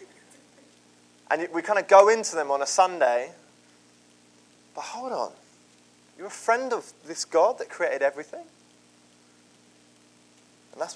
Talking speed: 130 wpm